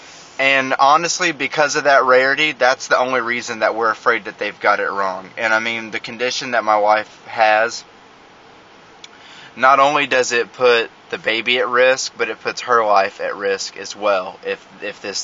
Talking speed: 190 wpm